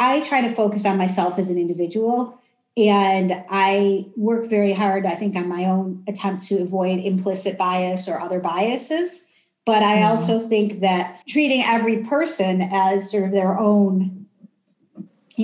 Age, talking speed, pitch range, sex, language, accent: 50-69, 160 wpm, 190-225 Hz, female, English, American